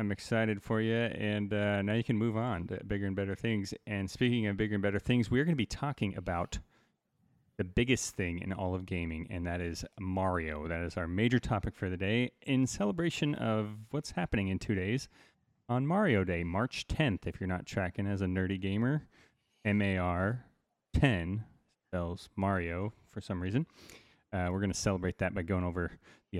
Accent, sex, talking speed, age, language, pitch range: American, male, 195 wpm, 30-49, English, 95-120 Hz